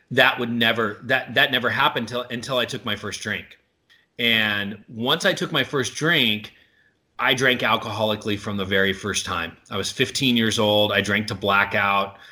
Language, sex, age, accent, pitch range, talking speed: English, male, 30-49, American, 105-130 Hz, 185 wpm